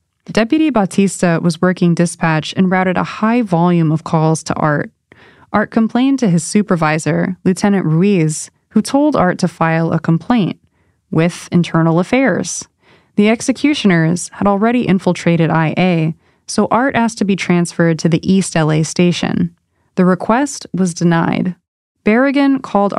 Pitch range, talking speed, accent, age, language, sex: 165-210 Hz, 140 wpm, American, 20-39, English, female